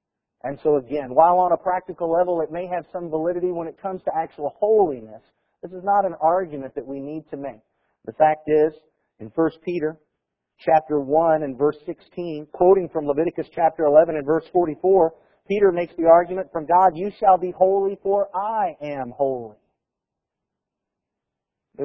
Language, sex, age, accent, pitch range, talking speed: English, male, 50-69, American, 145-185 Hz, 175 wpm